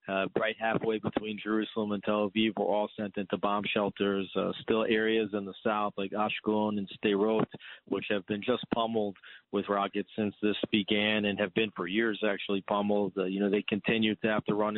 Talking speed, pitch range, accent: 205 wpm, 100-110 Hz, American